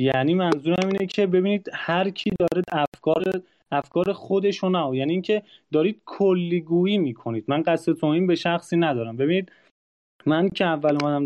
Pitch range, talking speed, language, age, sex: 155-200 Hz, 140 wpm, Persian, 30-49, male